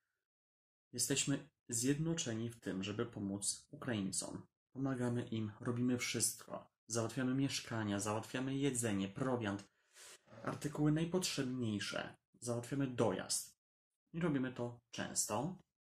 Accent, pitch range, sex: native, 105-130 Hz, male